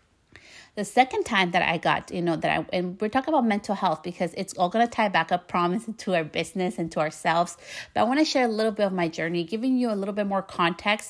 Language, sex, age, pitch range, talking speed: English, female, 30-49, 170-205 Hz, 260 wpm